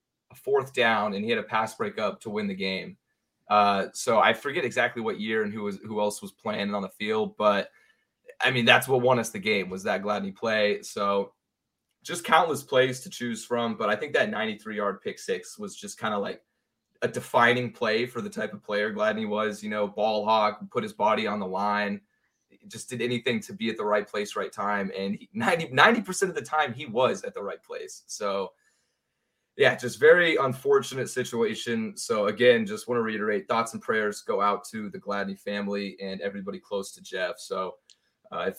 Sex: male